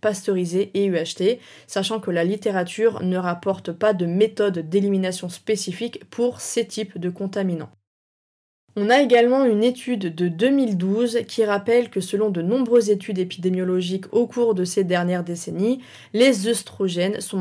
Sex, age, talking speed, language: female, 20-39, 150 wpm, French